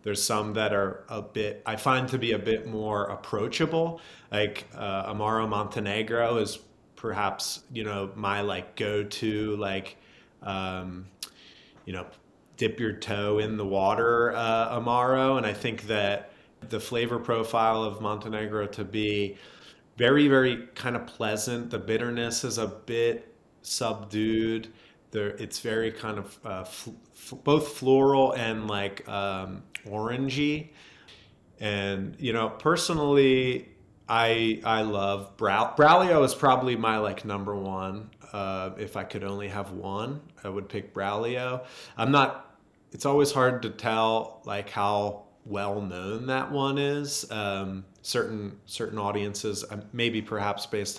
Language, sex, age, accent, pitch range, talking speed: English, male, 30-49, American, 100-115 Hz, 140 wpm